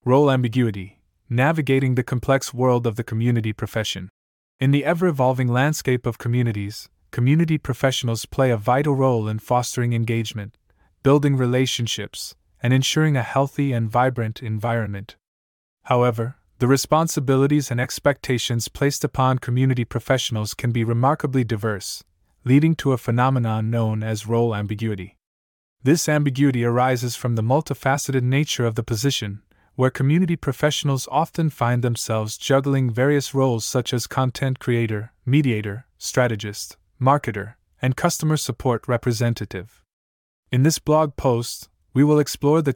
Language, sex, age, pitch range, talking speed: English, male, 20-39, 110-135 Hz, 130 wpm